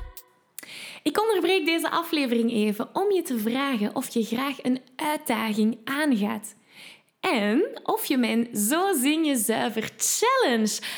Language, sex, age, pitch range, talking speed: Dutch, female, 10-29, 230-315 Hz, 115 wpm